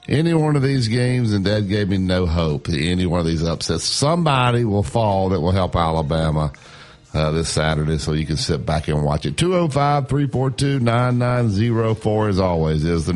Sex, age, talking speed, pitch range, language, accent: male, 50-69, 185 wpm, 90-135 Hz, English, American